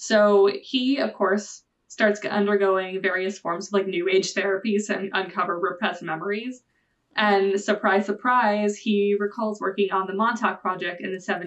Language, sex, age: English, female, 20-39